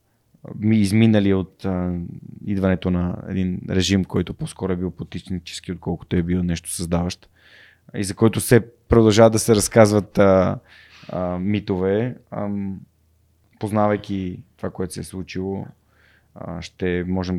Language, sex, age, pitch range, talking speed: Bulgarian, male, 20-39, 90-95 Hz, 130 wpm